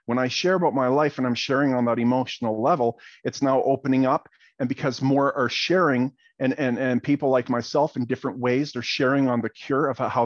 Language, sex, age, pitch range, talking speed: English, male, 40-59, 125-145 Hz, 220 wpm